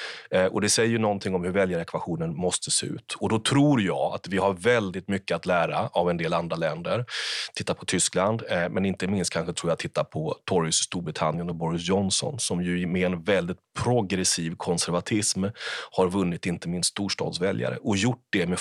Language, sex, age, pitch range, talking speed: Swedish, male, 30-49, 90-105 Hz, 195 wpm